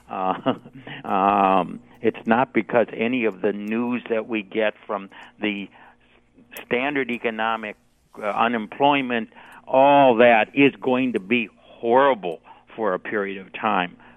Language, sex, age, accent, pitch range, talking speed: English, male, 60-79, American, 105-125 Hz, 125 wpm